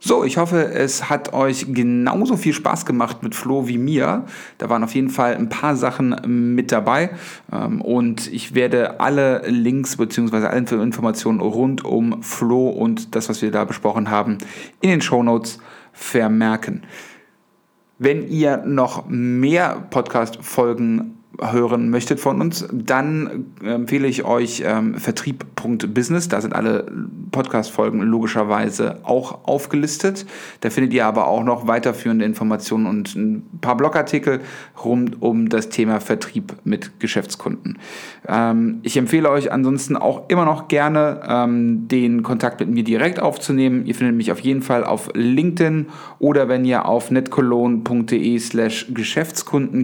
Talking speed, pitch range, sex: 145 wpm, 115-150 Hz, male